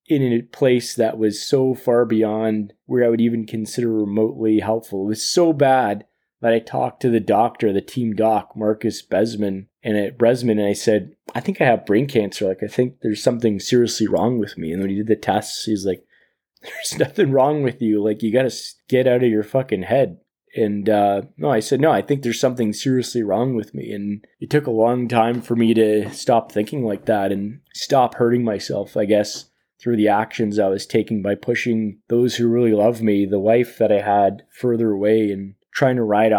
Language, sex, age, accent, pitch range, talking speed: English, male, 20-39, American, 105-120 Hz, 215 wpm